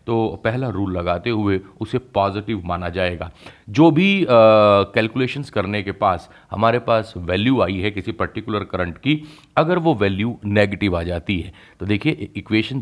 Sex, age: male, 40-59